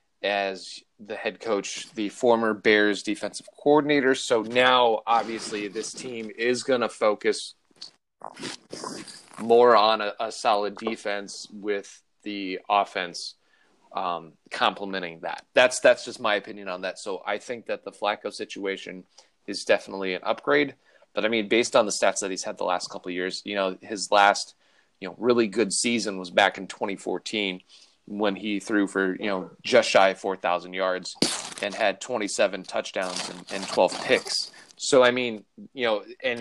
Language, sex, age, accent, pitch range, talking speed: English, male, 30-49, American, 95-115 Hz, 170 wpm